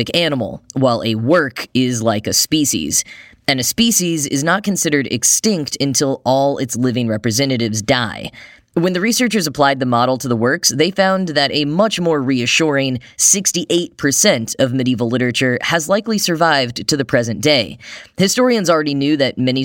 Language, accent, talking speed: English, American, 160 wpm